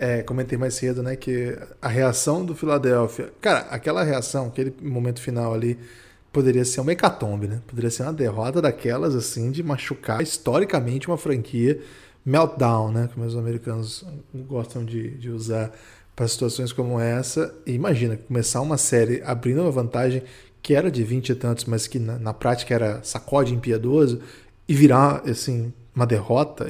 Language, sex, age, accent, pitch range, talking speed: Portuguese, male, 20-39, Brazilian, 120-140 Hz, 165 wpm